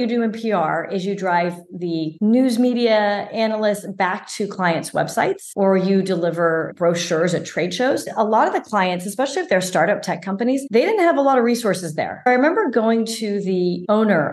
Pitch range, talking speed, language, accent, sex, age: 180-235 Hz, 195 wpm, English, American, female, 40-59